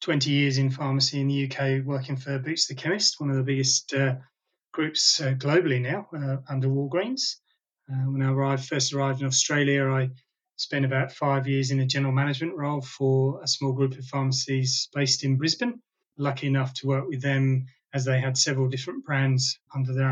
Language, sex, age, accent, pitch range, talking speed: English, male, 30-49, British, 135-145 Hz, 195 wpm